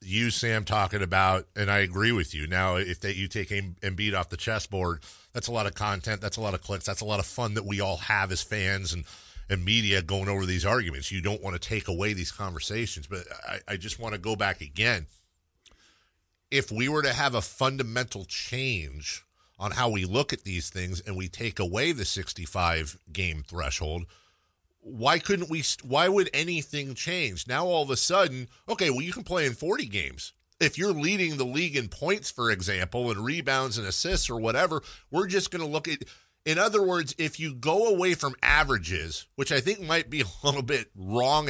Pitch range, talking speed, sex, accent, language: 95-140 Hz, 205 wpm, male, American, English